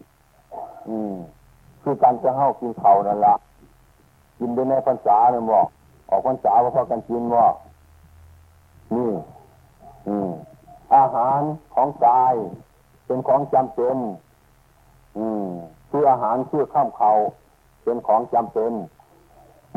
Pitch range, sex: 85-130 Hz, male